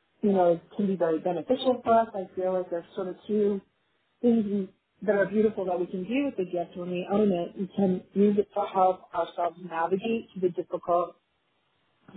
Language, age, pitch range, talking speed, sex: English, 30-49, 180-215 Hz, 210 wpm, female